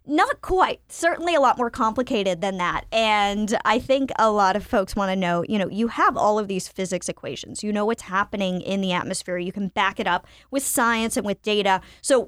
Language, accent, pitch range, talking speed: English, American, 185-235 Hz, 225 wpm